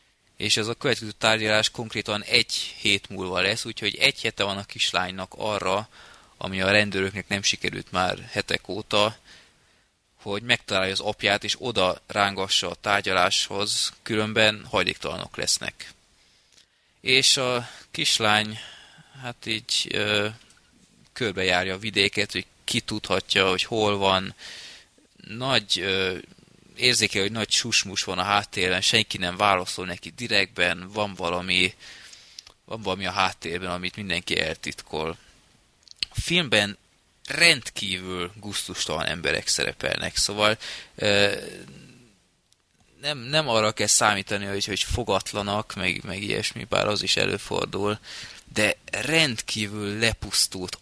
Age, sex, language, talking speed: 20-39, male, Hungarian, 120 wpm